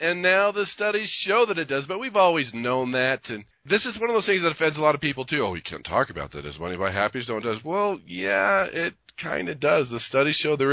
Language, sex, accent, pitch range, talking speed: English, male, American, 100-150 Hz, 275 wpm